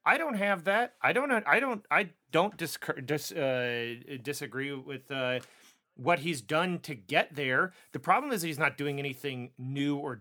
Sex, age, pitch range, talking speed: male, 30-49, 140-175 Hz, 175 wpm